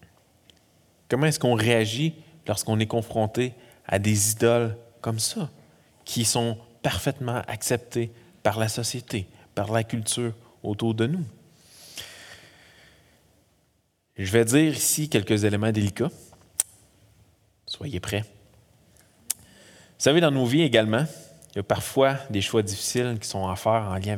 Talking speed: 130 wpm